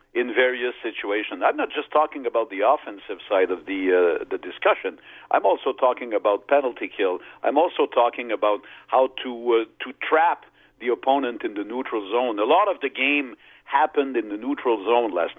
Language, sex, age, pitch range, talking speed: English, male, 50-69, 120-185 Hz, 185 wpm